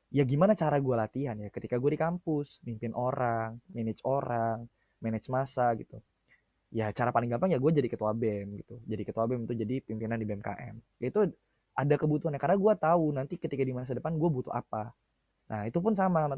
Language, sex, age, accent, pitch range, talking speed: Indonesian, male, 20-39, native, 125-185 Hz, 200 wpm